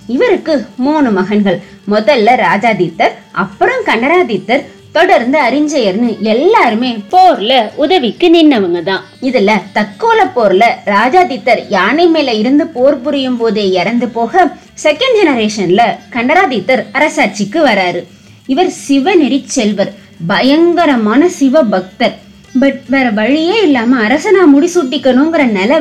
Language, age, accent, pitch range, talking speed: Tamil, 20-39, native, 210-310 Hz, 80 wpm